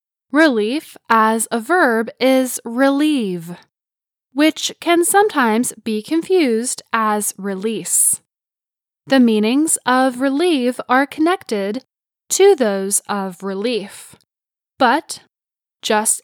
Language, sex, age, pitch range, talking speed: English, female, 10-29, 200-300 Hz, 90 wpm